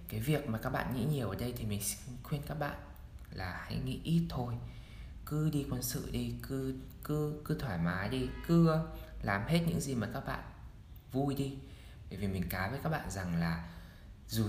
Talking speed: 205 wpm